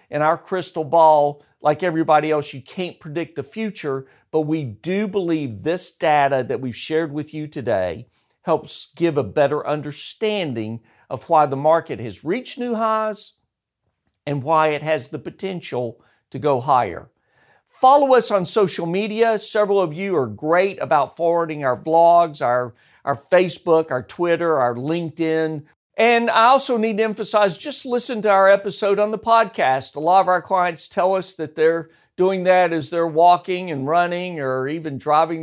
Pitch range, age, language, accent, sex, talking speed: 145-185 Hz, 50-69, English, American, male, 170 wpm